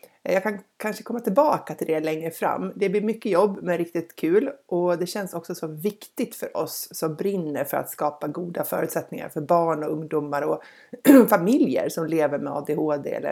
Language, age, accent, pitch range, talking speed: Swedish, 60-79, native, 155-200 Hz, 190 wpm